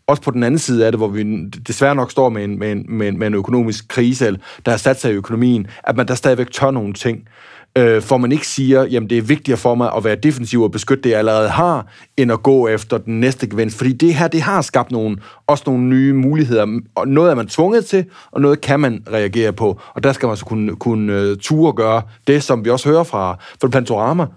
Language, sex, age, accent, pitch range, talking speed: Danish, male, 30-49, native, 115-140 Hz, 250 wpm